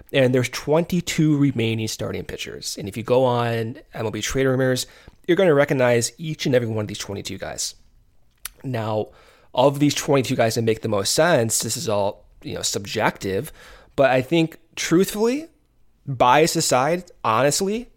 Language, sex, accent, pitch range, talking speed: English, male, American, 115-150 Hz, 165 wpm